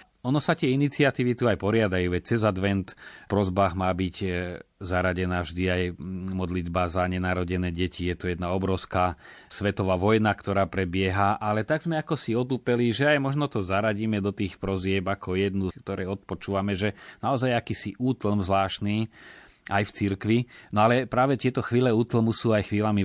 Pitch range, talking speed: 90-105 Hz, 165 wpm